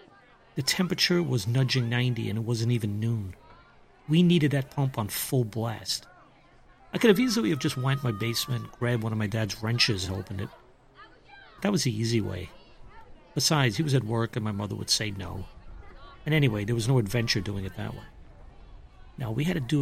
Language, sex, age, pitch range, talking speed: English, male, 50-69, 120-155 Hz, 200 wpm